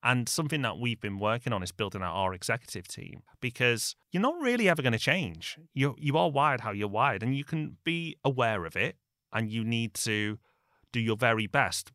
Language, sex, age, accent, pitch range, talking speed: English, male, 30-49, British, 105-140 Hz, 215 wpm